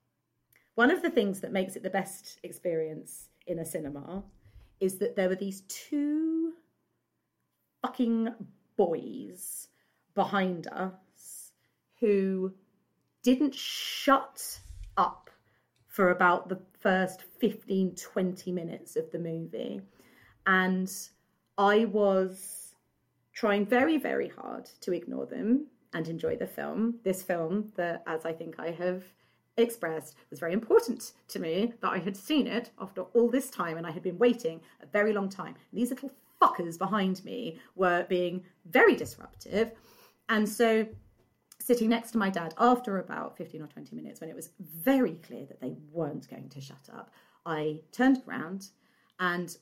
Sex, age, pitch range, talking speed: female, 30-49, 175-225 Hz, 145 wpm